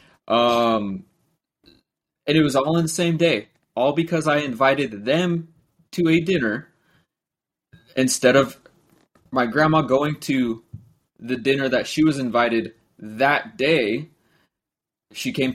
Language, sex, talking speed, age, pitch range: English, male, 125 wpm, 20-39, 120-160 Hz